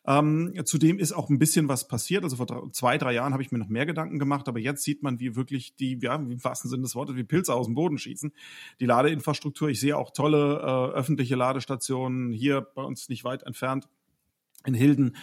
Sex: male